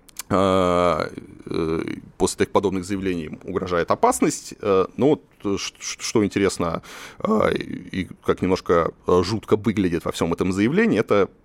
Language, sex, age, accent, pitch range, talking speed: Russian, male, 30-49, native, 90-120 Hz, 105 wpm